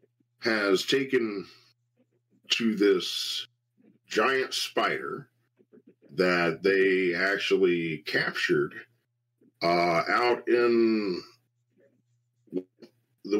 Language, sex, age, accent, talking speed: English, male, 40-59, American, 65 wpm